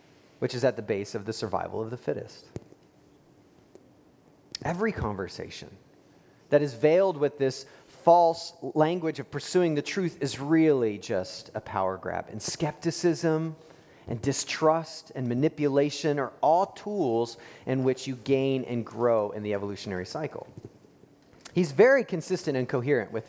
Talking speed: 140 wpm